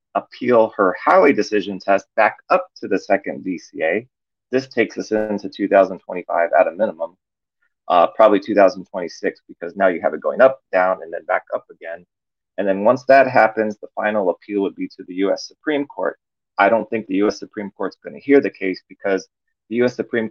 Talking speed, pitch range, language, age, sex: 195 wpm, 95-115 Hz, English, 30-49, male